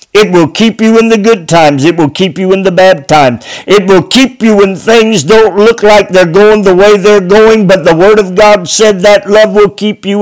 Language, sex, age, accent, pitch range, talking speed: English, male, 50-69, American, 125-195 Hz, 245 wpm